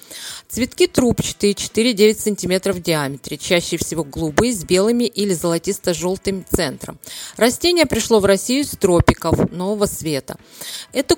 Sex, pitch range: female, 185-255 Hz